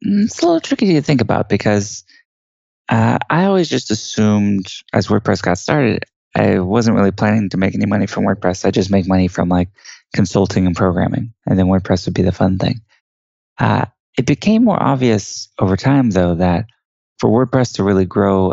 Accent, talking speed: American, 190 wpm